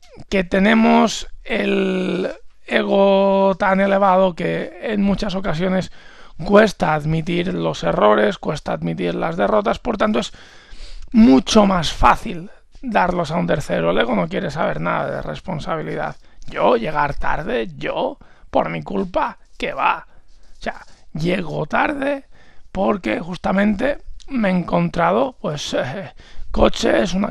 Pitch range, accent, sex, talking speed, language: 150-200 Hz, Spanish, male, 125 wpm, Spanish